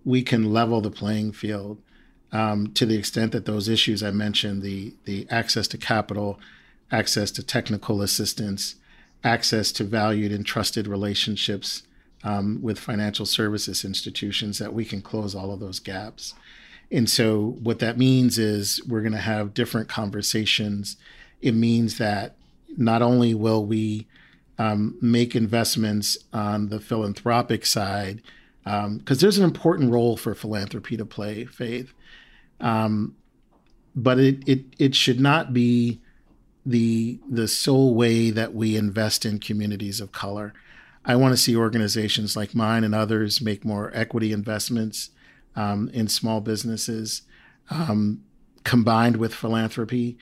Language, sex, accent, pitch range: English, male, American, 105-115 Hz